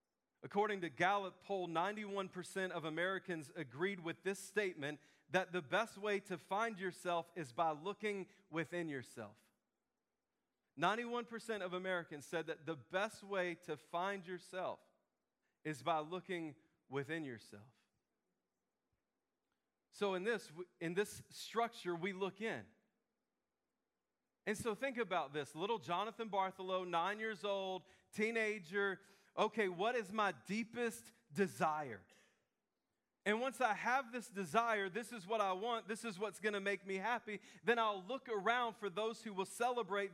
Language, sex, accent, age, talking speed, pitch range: English, male, American, 40-59, 140 wpm, 175-220 Hz